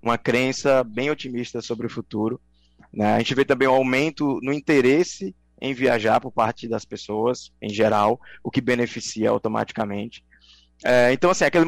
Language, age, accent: Portuguese, 20-39, Brazilian